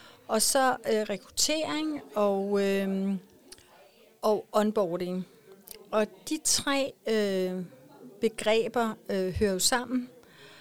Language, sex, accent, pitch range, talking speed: Danish, female, native, 185-225 Hz, 95 wpm